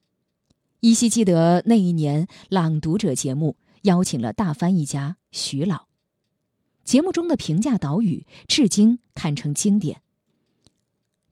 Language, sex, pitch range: Chinese, female, 160-230 Hz